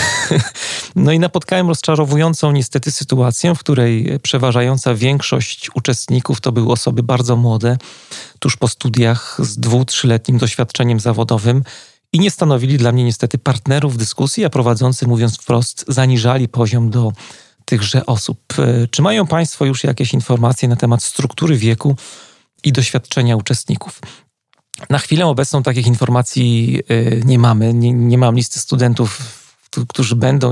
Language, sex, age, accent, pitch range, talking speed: Polish, male, 40-59, native, 120-135 Hz, 135 wpm